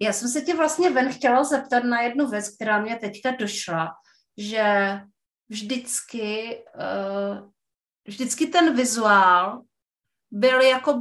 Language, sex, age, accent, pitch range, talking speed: Czech, female, 30-49, native, 200-255 Hz, 115 wpm